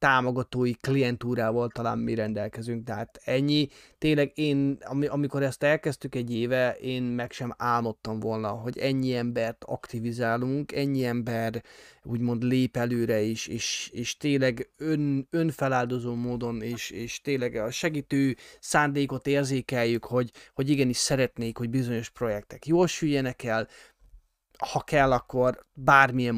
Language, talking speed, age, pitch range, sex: Hungarian, 130 wpm, 20-39, 115-140 Hz, male